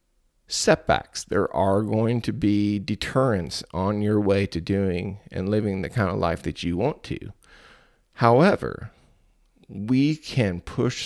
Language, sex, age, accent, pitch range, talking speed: English, male, 30-49, American, 90-110 Hz, 140 wpm